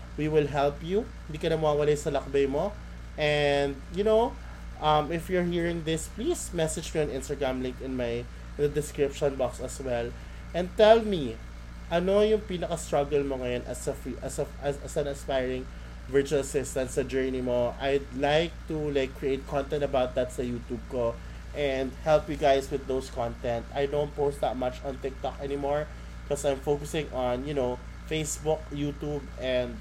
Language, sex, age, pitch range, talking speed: Filipino, male, 20-39, 125-155 Hz, 175 wpm